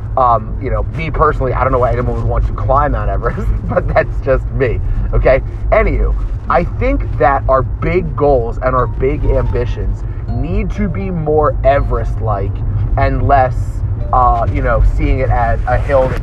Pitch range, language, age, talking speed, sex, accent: 105-130 Hz, English, 30-49, 180 wpm, male, American